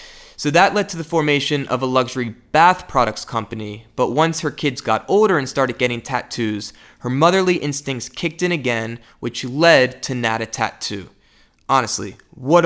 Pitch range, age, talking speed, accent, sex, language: 125-165 Hz, 20-39, 165 wpm, American, male, English